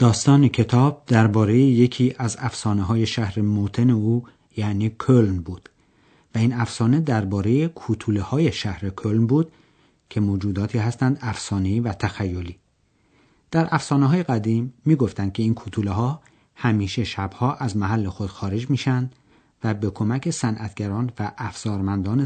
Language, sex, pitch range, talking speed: Persian, male, 100-130 Hz, 135 wpm